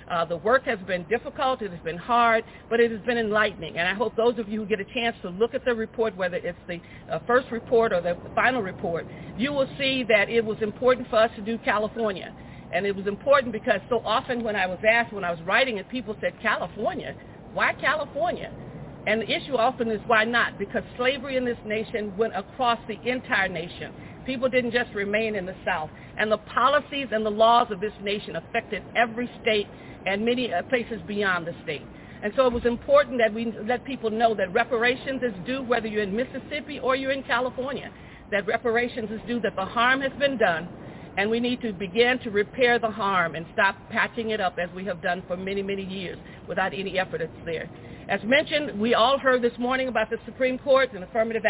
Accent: American